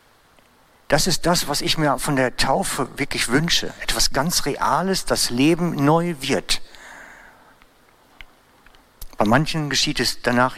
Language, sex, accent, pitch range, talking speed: German, male, German, 120-145 Hz, 130 wpm